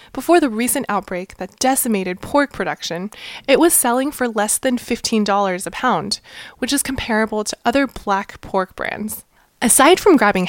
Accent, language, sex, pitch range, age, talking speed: American, English, female, 200-265 Hz, 20-39, 160 wpm